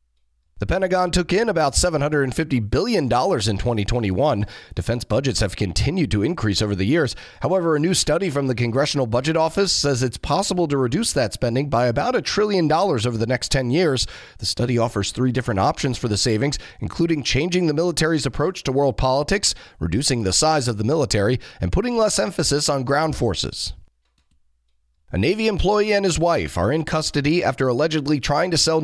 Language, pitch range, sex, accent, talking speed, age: English, 115-155 Hz, male, American, 185 wpm, 30-49